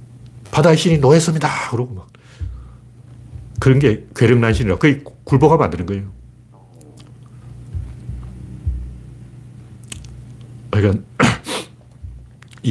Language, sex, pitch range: Korean, male, 105-135 Hz